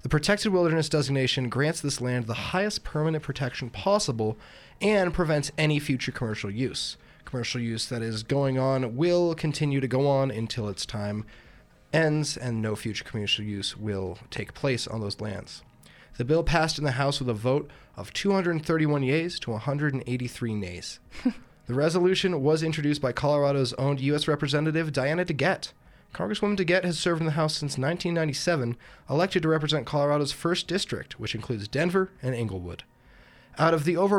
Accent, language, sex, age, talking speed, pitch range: American, English, male, 20-39, 165 wpm, 120-165 Hz